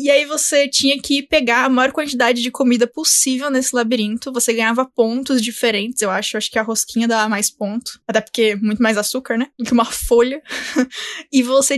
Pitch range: 225-260 Hz